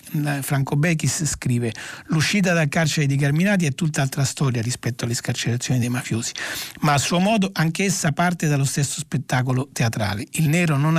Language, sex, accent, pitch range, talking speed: Italian, male, native, 130-160 Hz, 165 wpm